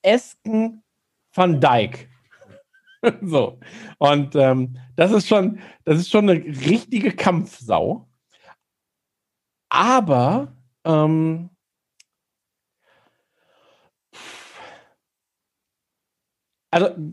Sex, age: male, 50-69